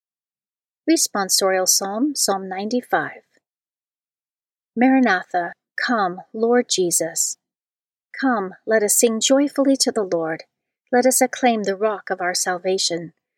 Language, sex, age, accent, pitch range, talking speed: English, female, 40-59, American, 180-245 Hz, 110 wpm